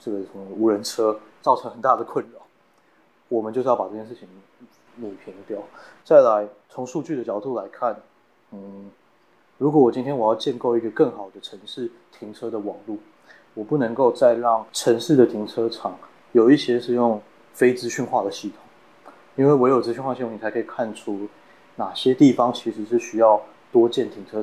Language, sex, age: Chinese, male, 20-39